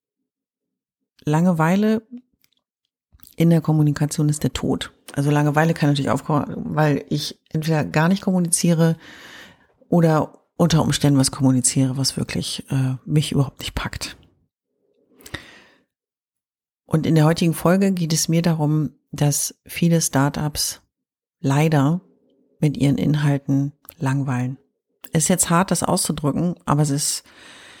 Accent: German